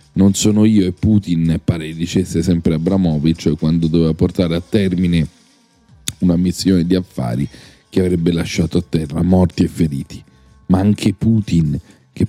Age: 40-59